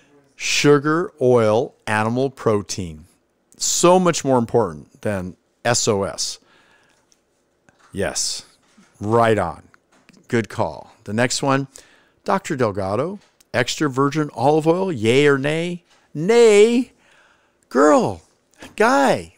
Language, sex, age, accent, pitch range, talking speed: English, male, 50-69, American, 145-210 Hz, 95 wpm